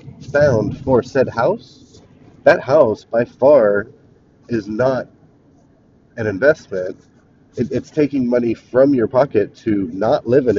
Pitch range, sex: 110-135 Hz, male